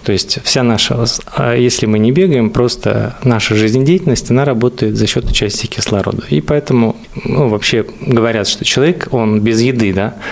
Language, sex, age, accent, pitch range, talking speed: Russian, male, 20-39, native, 110-135 Hz, 165 wpm